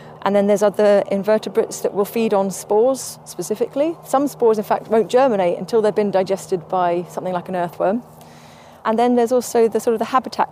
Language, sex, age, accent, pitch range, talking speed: English, female, 30-49, British, 180-220 Hz, 200 wpm